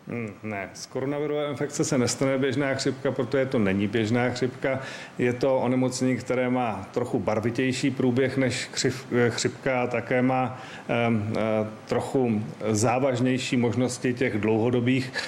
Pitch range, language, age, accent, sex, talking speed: 125-135 Hz, Czech, 40-59, native, male, 135 wpm